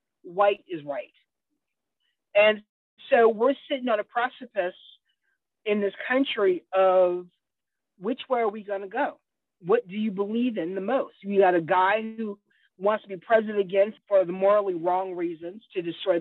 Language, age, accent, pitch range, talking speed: English, 50-69, American, 180-230 Hz, 165 wpm